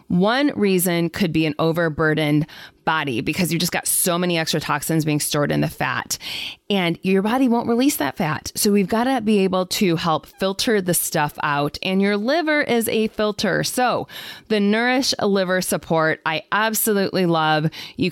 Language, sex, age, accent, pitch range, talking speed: English, female, 20-39, American, 160-215 Hz, 180 wpm